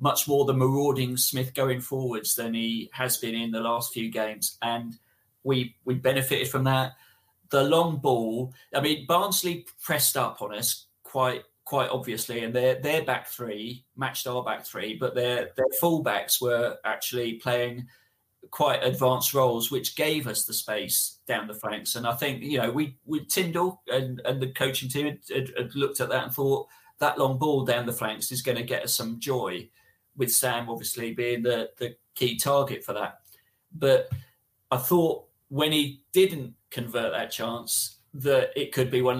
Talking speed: 185 wpm